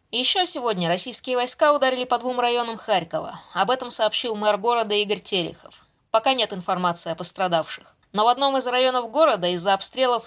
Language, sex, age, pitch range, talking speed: Russian, female, 20-39, 195-250 Hz, 170 wpm